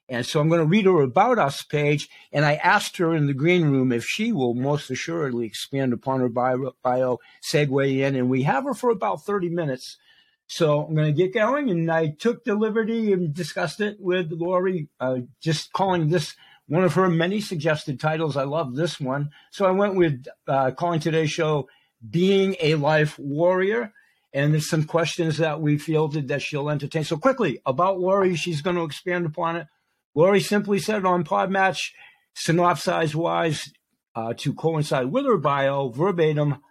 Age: 50-69